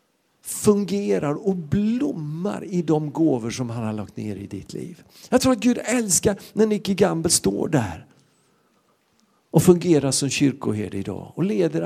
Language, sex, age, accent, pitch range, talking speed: Swedish, male, 50-69, native, 155-215 Hz, 155 wpm